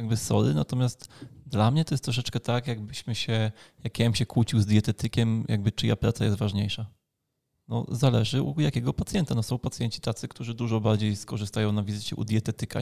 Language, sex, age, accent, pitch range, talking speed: Polish, male, 20-39, native, 105-120 Hz, 185 wpm